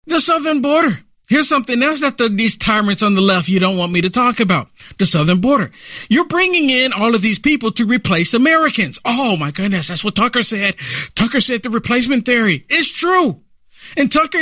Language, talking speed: English, 205 wpm